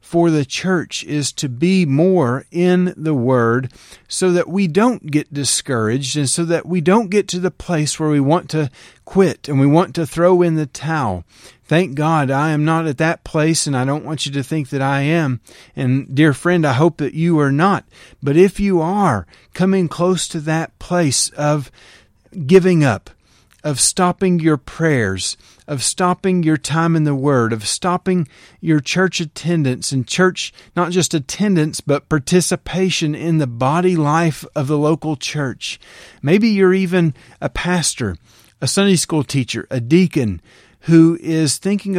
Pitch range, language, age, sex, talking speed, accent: 135-175 Hz, English, 40-59, male, 175 wpm, American